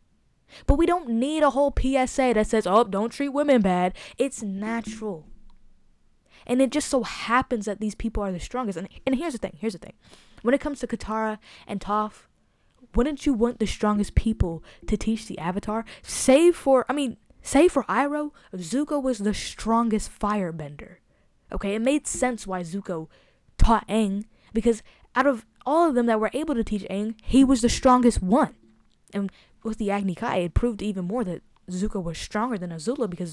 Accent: American